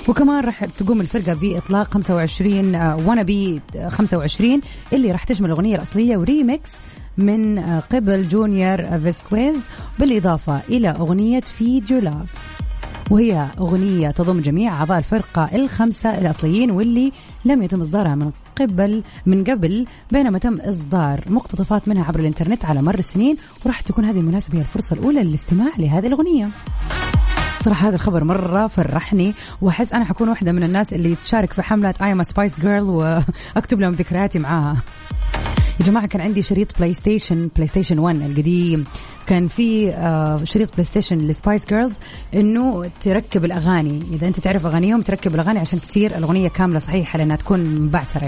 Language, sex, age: Arabic, female, 30-49